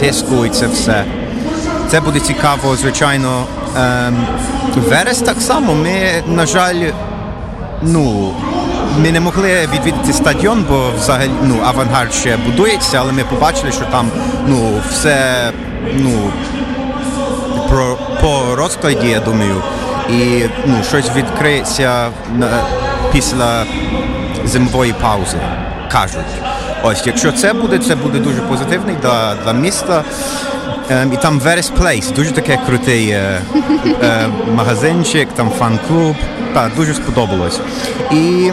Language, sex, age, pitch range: Ukrainian, male, 30-49, 120-190 Hz